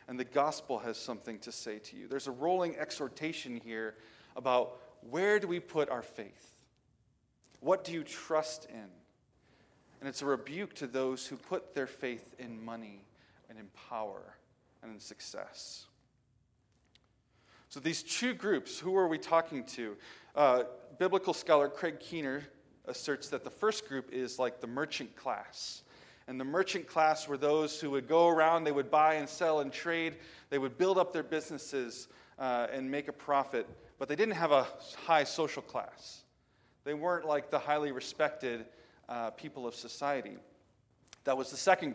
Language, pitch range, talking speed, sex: English, 125-160 Hz, 170 wpm, male